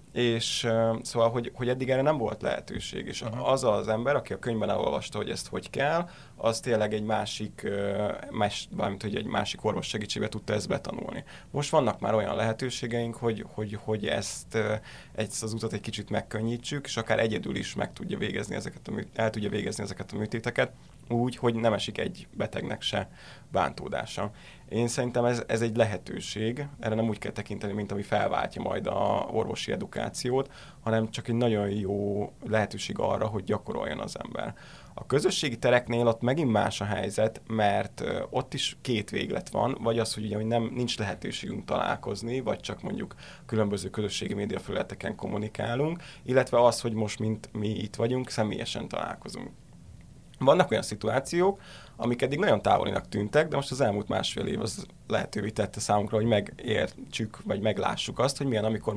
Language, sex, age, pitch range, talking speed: Hungarian, male, 20-39, 105-120 Hz, 170 wpm